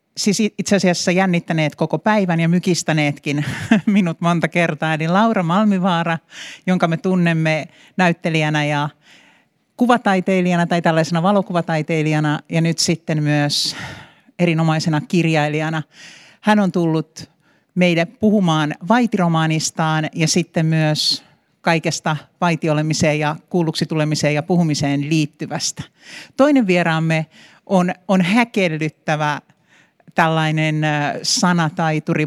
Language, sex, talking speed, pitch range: Finnish, male, 100 wpm, 155-190 Hz